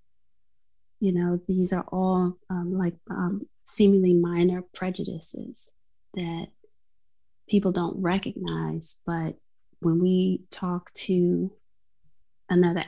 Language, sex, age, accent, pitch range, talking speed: English, female, 30-49, American, 165-185 Hz, 100 wpm